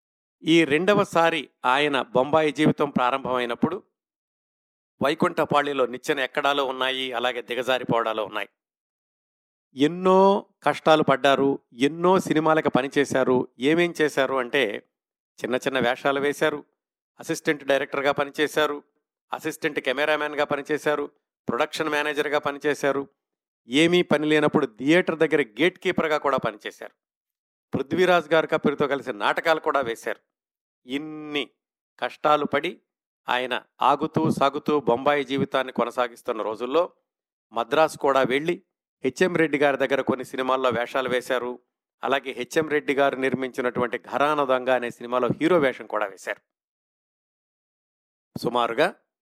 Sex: male